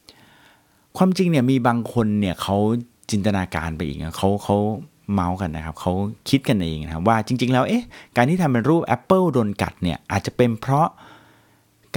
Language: Thai